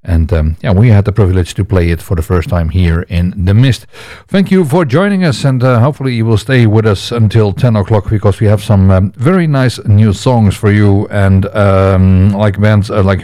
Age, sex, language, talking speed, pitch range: 50-69, male, Dutch, 230 wpm, 95-115 Hz